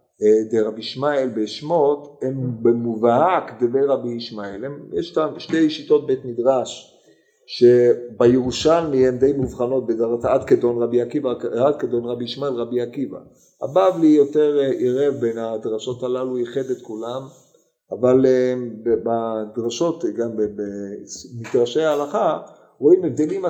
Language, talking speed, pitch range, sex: Hebrew, 115 wpm, 120-195 Hz, male